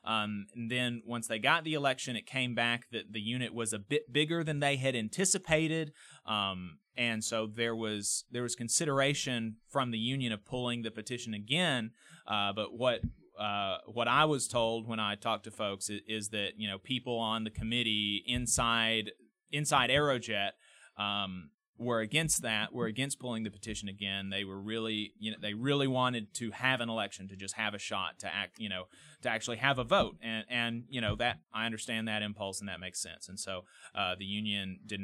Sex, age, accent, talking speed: male, 30-49, American, 200 wpm